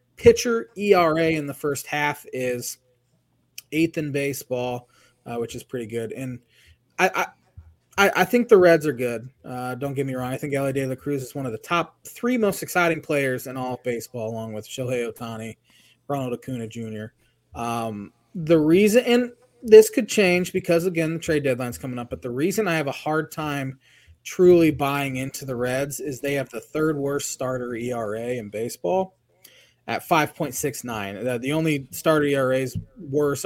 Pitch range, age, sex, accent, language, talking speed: 120-155 Hz, 20-39, male, American, English, 180 wpm